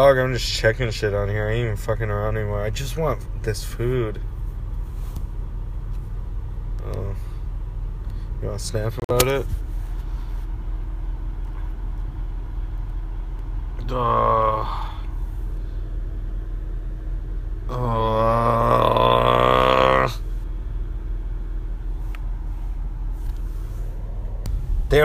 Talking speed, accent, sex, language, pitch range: 60 wpm, American, male, English, 85-120 Hz